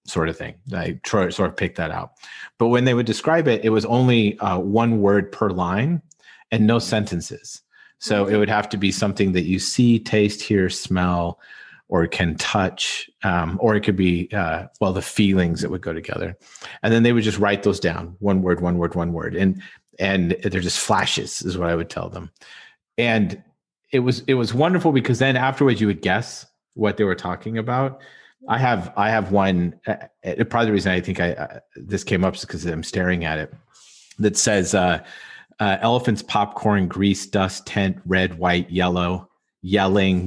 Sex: male